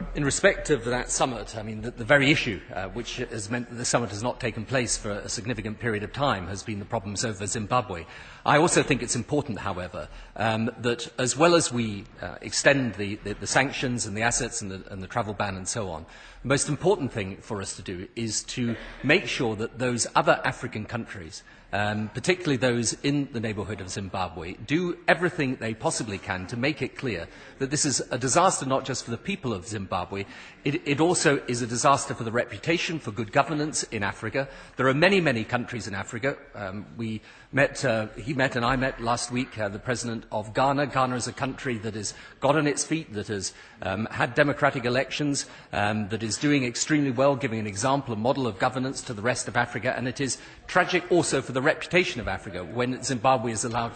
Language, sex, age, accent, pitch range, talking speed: English, male, 40-59, British, 110-140 Hz, 220 wpm